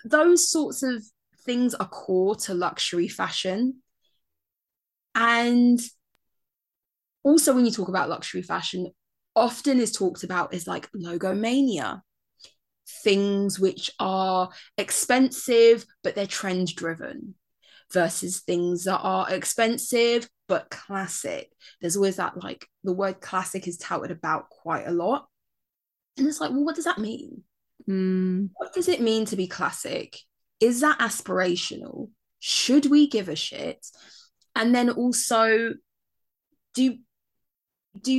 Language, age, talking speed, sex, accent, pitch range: English, 10-29, 125 wpm, female, British, 185-250 Hz